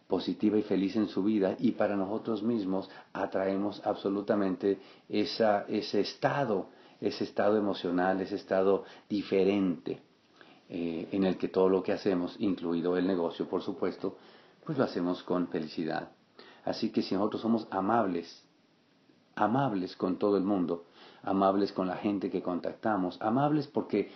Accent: Mexican